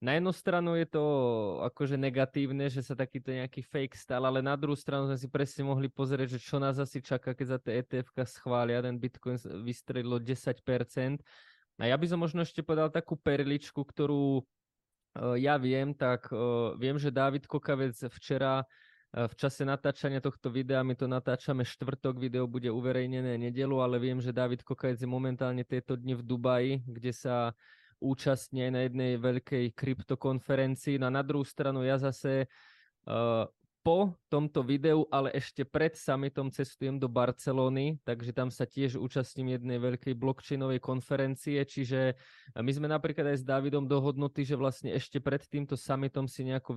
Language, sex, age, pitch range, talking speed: Slovak, male, 20-39, 125-140 Hz, 170 wpm